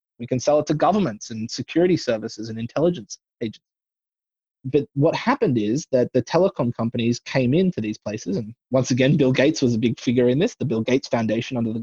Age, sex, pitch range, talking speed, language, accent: 20-39, male, 115-150 Hz, 210 wpm, English, Australian